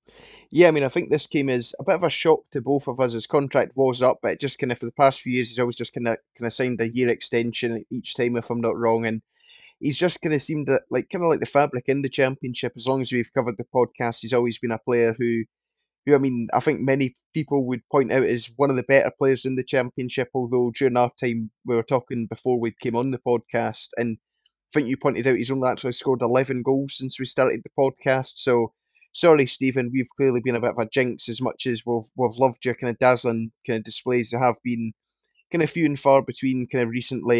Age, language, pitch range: 10-29, English, 120-135 Hz